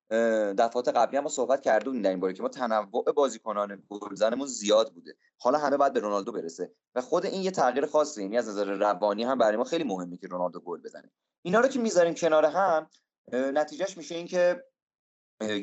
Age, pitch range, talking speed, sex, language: 30-49, 105-140 Hz, 185 wpm, male, Persian